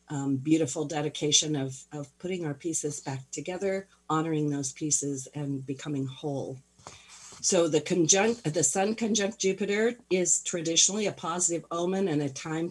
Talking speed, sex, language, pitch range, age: 145 wpm, female, English, 140-175 Hz, 50-69